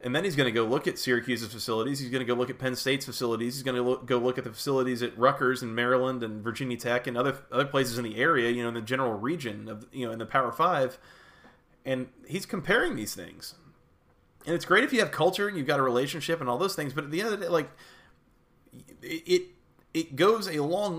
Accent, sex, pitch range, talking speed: American, male, 125-160 Hz, 255 wpm